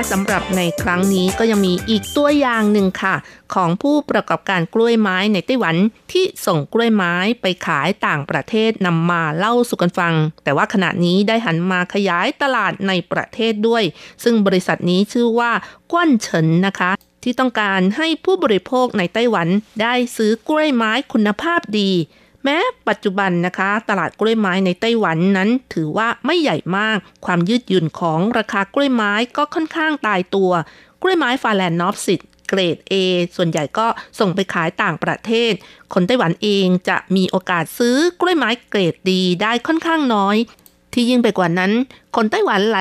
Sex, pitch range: female, 185-245 Hz